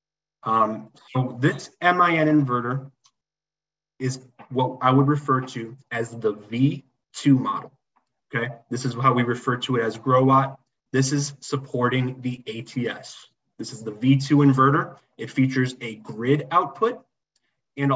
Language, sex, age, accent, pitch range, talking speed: English, male, 20-39, American, 125-145 Hz, 135 wpm